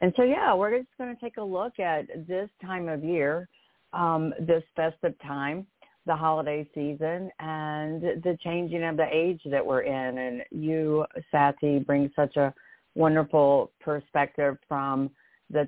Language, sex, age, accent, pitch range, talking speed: English, female, 50-69, American, 130-155 Hz, 155 wpm